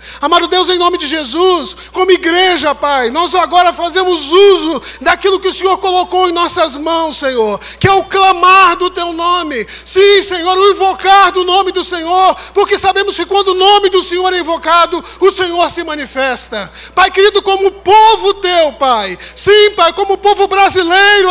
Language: Portuguese